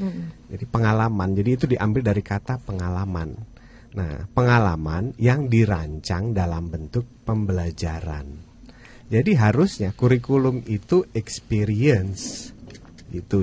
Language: Indonesian